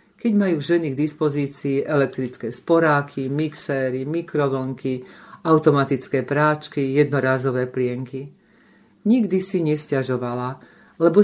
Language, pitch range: Slovak, 135-170 Hz